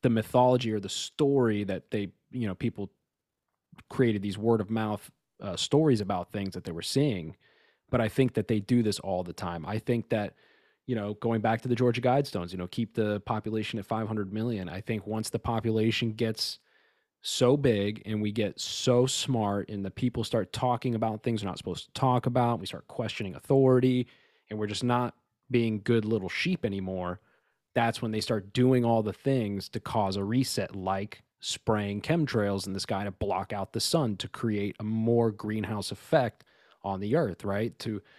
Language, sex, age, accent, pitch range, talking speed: English, male, 20-39, American, 105-130 Hz, 195 wpm